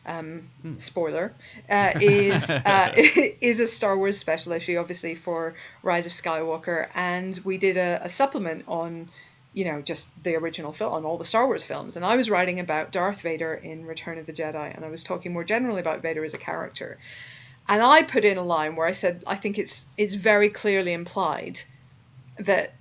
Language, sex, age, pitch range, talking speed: English, female, 40-59, 155-190 Hz, 195 wpm